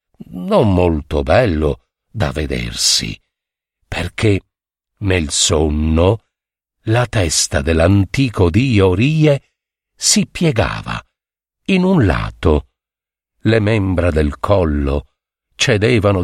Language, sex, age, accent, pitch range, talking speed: Italian, male, 60-79, native, 80-115 Hz, 85 wpm